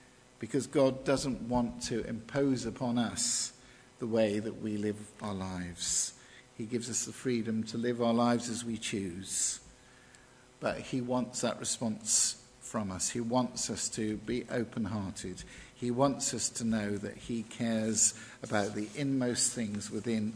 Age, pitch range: 50-69, 105-125 Hz